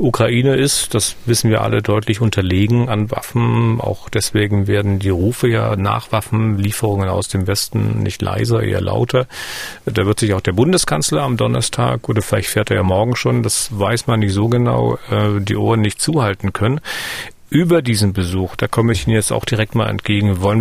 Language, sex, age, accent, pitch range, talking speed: German, male, 40-59, German, 100-120 Hz, 185 wpm